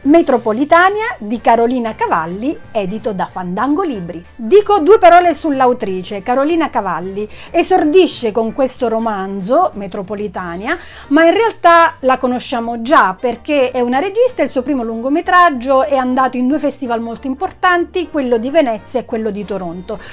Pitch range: 215-340 Hz